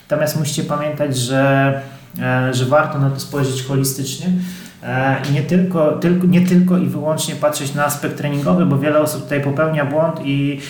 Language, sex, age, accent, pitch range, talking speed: Polish, male, 30-49, native, 140-155 Hz, 155 wpm